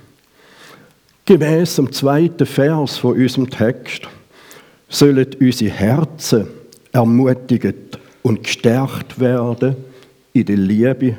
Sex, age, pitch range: male, 60-79, 115-145 Hz